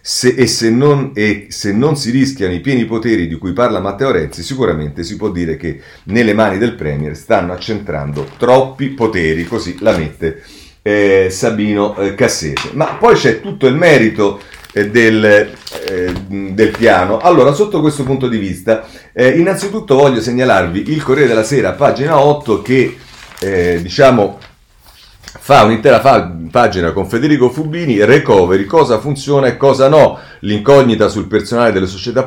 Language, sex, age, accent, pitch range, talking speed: Italian, male, 40-59, native, 95-130 Hz, 145 wpm